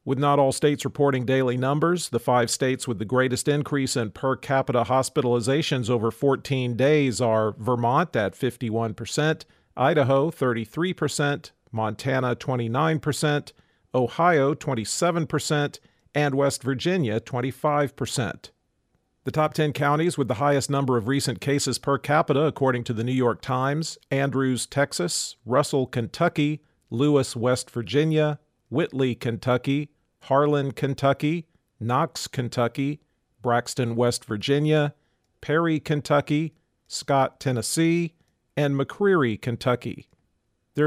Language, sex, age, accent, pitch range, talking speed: English, male, 40-59, American, 125-150 Hz, 115 wpm